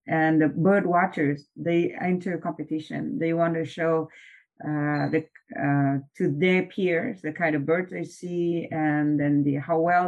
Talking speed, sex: 165 wpm, female